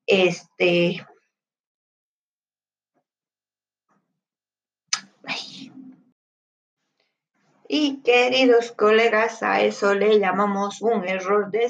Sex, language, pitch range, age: female, Spanish, 185-235 Hz, 40-59